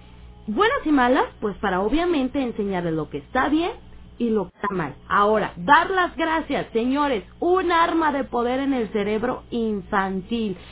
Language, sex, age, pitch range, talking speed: Spanish, female, 30-49, 210-285 Hz, 160 wpm